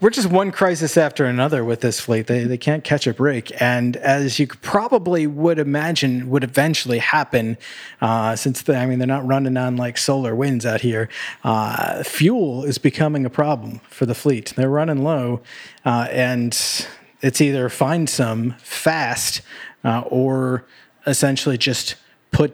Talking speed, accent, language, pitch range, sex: 165 wpm, American, English, 120-150 Hz, male